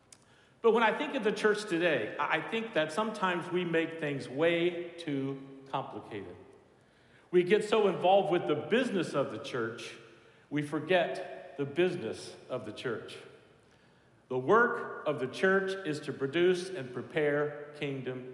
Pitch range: 140-195 Hz